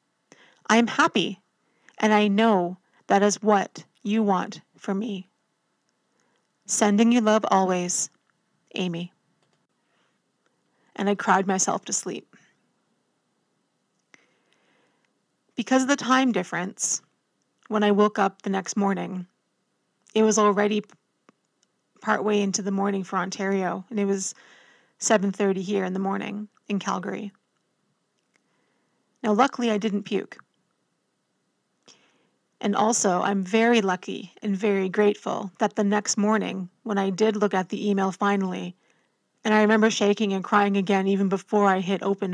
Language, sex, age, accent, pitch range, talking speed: English, female, 30-49, American, 195-215 Hz, 130 wpm